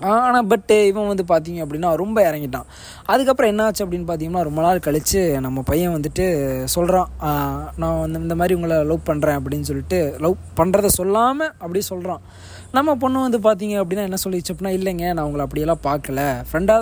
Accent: native